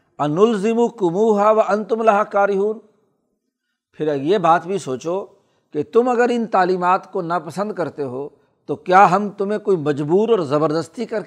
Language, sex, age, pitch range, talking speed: Urdu, male, 60-79, 155-205 Hz, 155 wpm